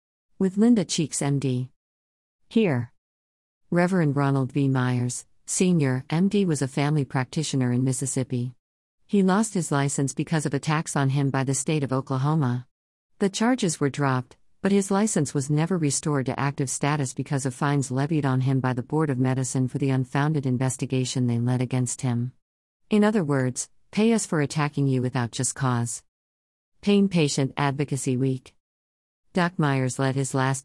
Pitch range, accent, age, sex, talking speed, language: 130-160 Hz, American, 50-69, female, 165 wpm, English